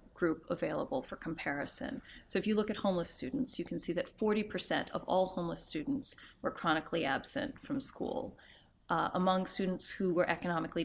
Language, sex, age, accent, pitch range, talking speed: English, female, 30-49, American, 175-215 Hz, 175 wpm